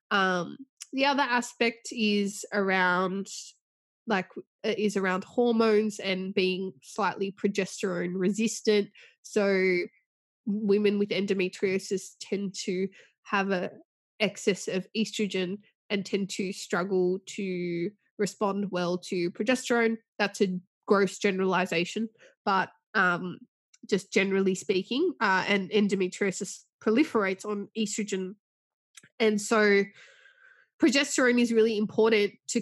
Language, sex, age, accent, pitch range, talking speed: English, female, 20-39, Australian, 190-220 Hz, 105 wpm